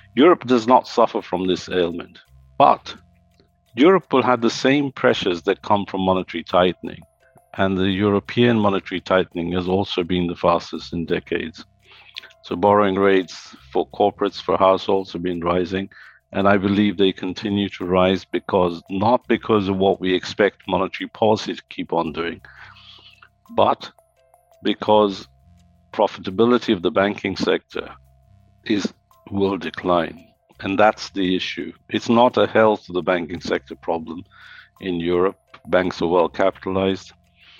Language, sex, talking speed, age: English, male, 145 wpm, 50-69